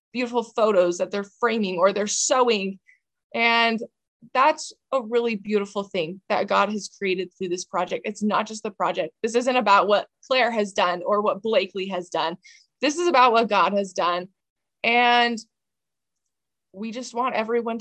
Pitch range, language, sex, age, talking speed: 195-230 Hz, English, female, 20-39, 170 wpm